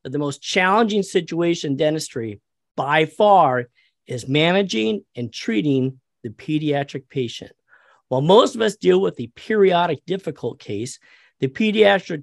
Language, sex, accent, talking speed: English, male, American, 135 wpm